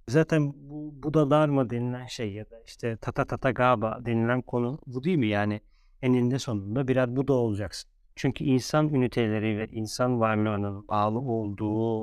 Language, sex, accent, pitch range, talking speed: Turkish, male, native, 110-135 Hz, 165 wpm